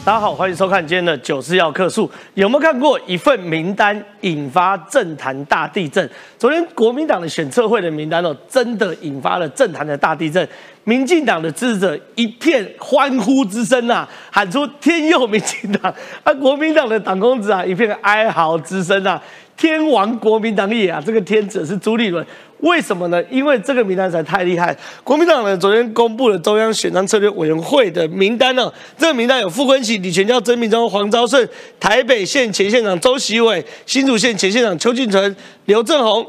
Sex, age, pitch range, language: male, 40-59, 190-265 Hz, Chinese